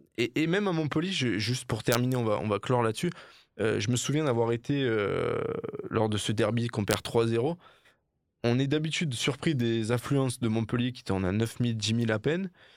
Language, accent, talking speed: French, French, 210 wpm